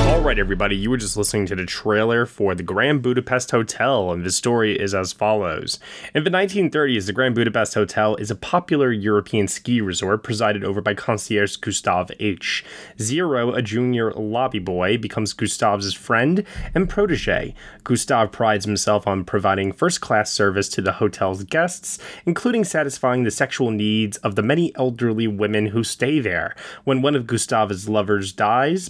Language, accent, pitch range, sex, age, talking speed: English, American, 105-145 Hz, male, 20-39, 165 wpm